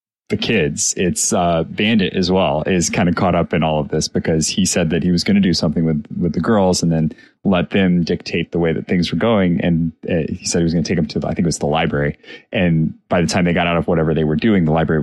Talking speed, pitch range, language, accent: 290 wpm, 80-95 Hz, English, American